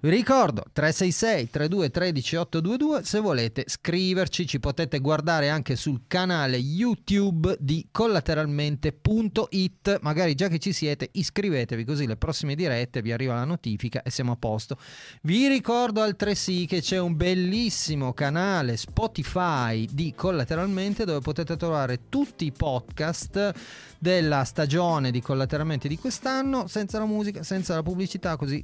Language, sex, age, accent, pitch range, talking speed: Italian, male, 30-49, native, 125-175 Hz, 130 wpm